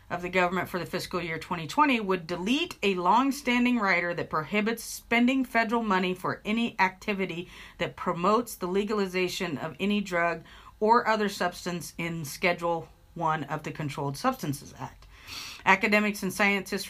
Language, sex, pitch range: English, female, 170-210 Hz